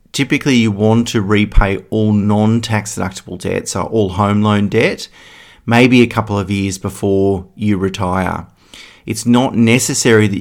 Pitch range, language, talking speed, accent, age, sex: 100-115 Hz, English, 145 wpm, Australian, 30-49, male